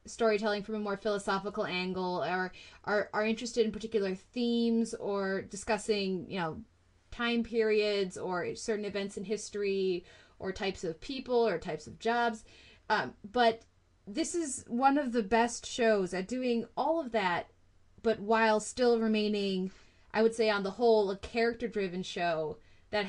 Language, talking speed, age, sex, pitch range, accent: English, 160 wpm, 20-39, female, 200-240 Hz, American